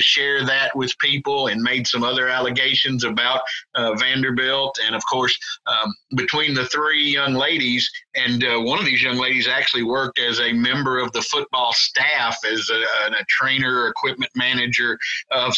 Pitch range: 125-145 Hz